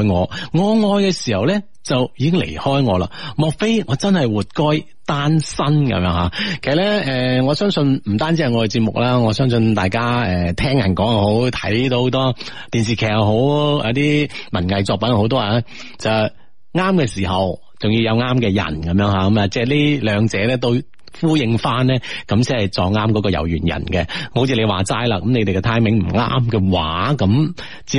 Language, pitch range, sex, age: Chinese, 100-145 Hz, male, 30-49